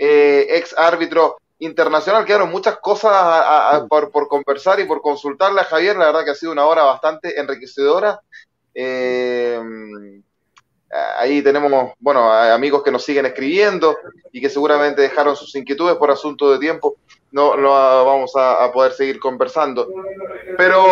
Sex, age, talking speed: male, 30-49, 160 wpm